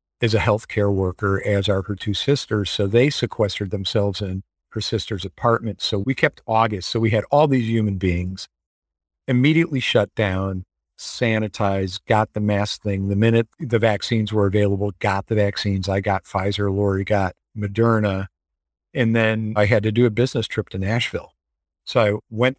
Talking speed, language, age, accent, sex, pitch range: 175 wpm, English, 50-69, American, male, 100-120 Hz